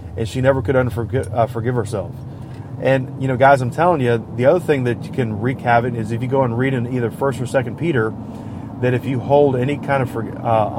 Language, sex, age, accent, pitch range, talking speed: English, male, 30-49, American, 115-140 Hz, 245 wpm